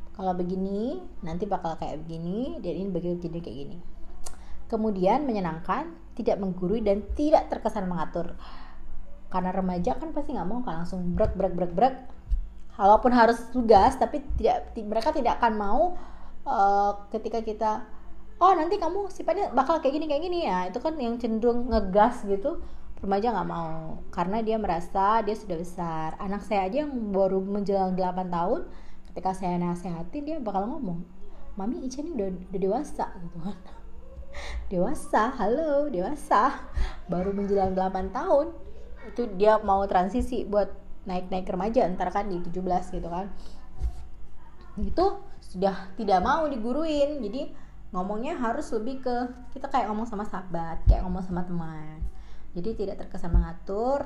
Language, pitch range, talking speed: Indonesian, 180-245 Hz, 145 wpm